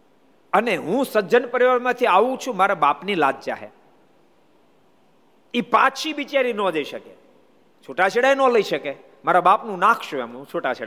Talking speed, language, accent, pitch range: 70 wpm, Gujarati, native, 125-210 Hz